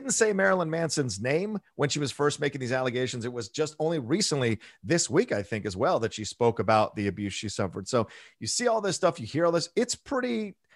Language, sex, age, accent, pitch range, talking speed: English, male, 40-59, American, 125-165 Hz, 235 wpm